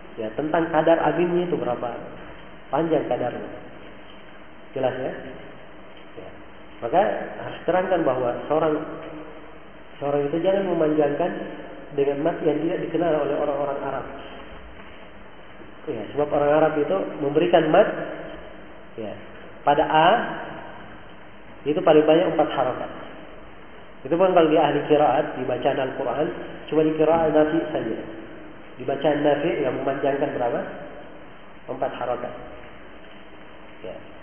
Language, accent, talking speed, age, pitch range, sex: Indonesian, native, 110 wpm, 40-59, 135-160 Hz, male